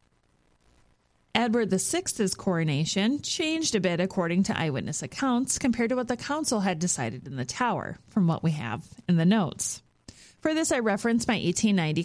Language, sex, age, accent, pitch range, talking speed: English, female, 30-49, American, 165-225 Hz, 165 wpm